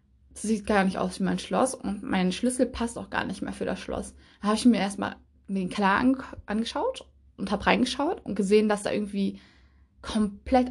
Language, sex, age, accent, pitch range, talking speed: German, female, 20-39, German, 195-235 Hz, 205 wpm